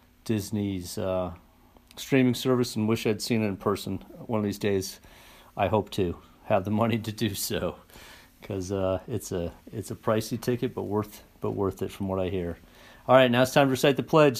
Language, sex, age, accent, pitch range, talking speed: English, male, 50-69, American, 105-135 Hz, 205 wpm